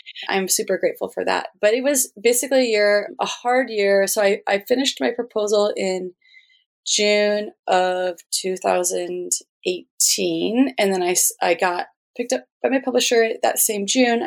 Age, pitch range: 30-49, 190-265 Hz